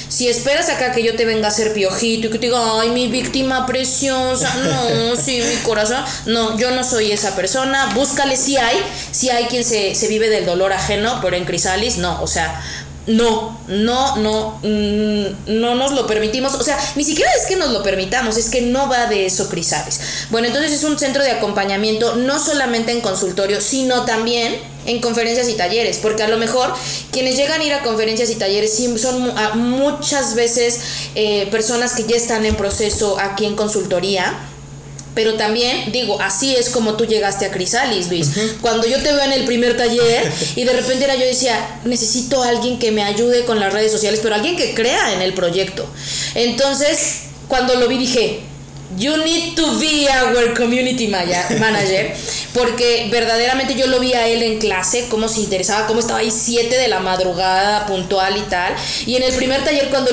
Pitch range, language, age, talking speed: 210-255 Hz, Spanish, 20-39, 195 wpm